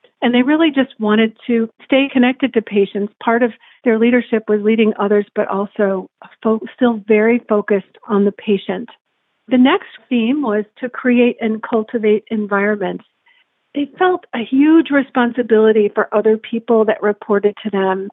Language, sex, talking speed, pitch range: English, female, 150 wpm, 210-245 Hz